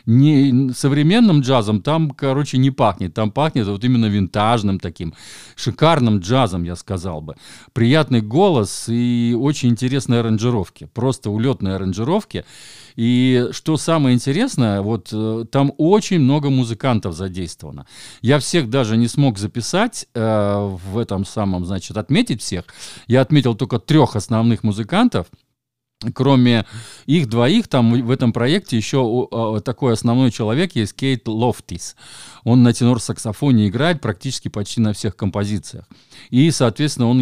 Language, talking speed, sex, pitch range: Russian, 130 wpm, male, 110-135 Hz